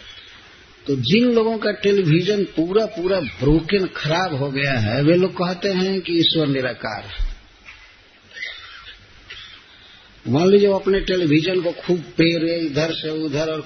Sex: male